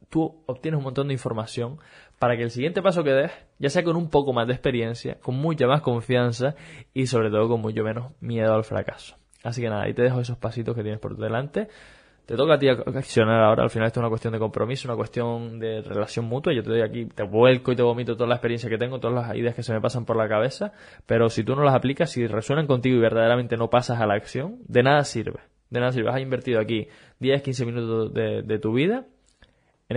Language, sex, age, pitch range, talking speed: Spanish, male, 20-39, 115-135 Hz, 245 wpm